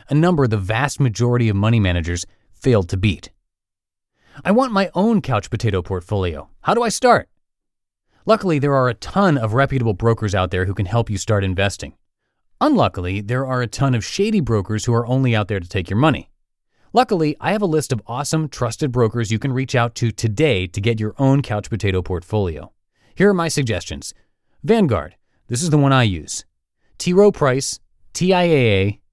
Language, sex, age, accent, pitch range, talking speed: English, male, 30-49, American, 100-150 Hz, 190 wpm